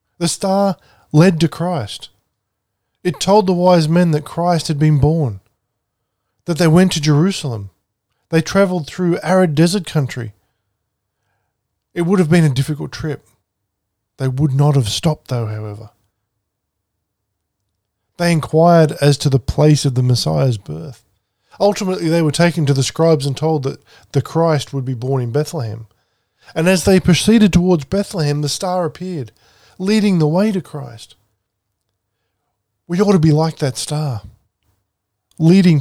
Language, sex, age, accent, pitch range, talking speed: English, male, 20-39, Australian, 110-170 Hz, 150 wpm